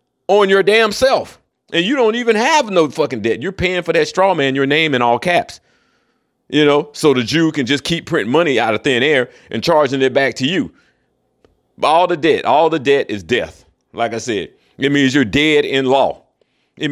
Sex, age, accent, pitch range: male, 40-59, American, 120-160 Hz